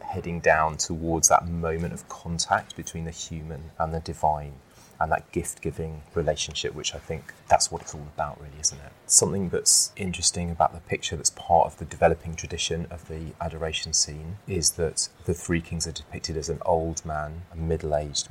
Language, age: English, 30-49